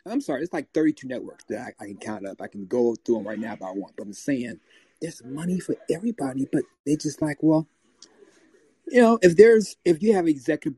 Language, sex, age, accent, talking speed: English, male, 30-49, American, 240 wpm